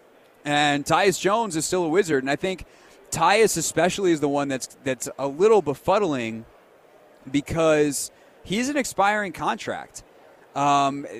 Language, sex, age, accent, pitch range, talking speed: English, male, 30-49, American, 135-175 Hz, 140 wpm